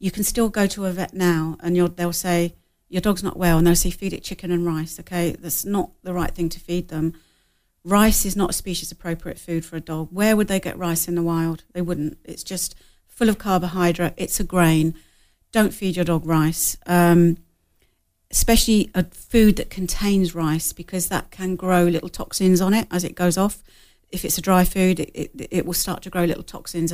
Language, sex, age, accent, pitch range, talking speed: English, female, 40-59, British, 170-190 Hz, 215 wpm